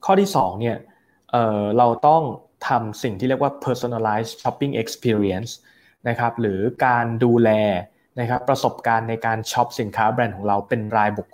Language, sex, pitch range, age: Thai, male, 110-130 Hz, 20-39